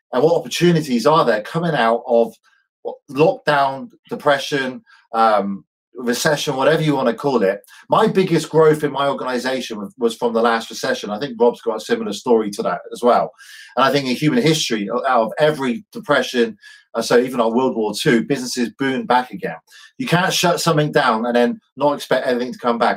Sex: male